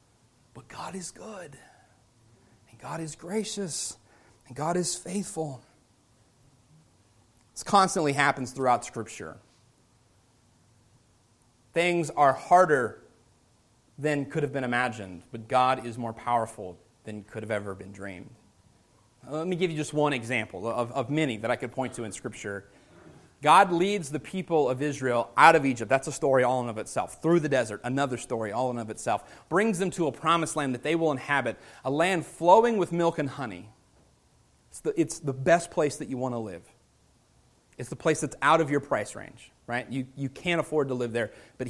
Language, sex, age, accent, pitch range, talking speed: English, male, 30-49, American, 115-160 Hz, 180 wpm